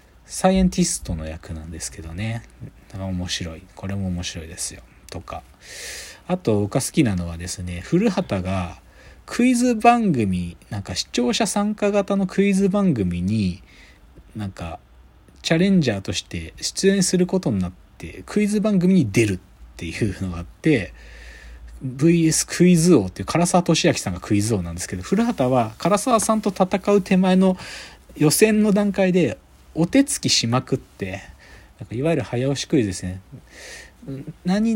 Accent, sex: native, male